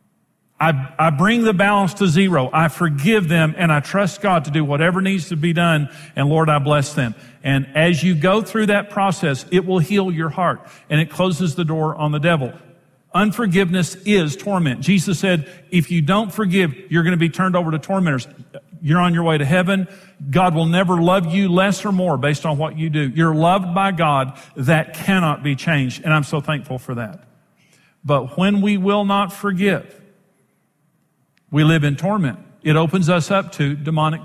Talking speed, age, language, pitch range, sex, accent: 195 wpm, 50-69, English, 145-190 Hz, male, American